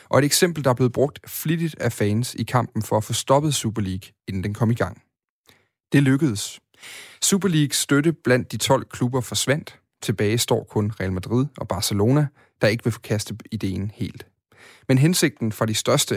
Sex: male